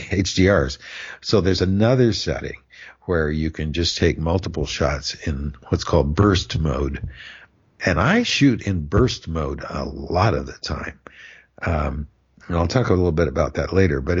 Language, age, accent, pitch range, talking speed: English, 60-79, American, 75-95 Hz, 165 wpm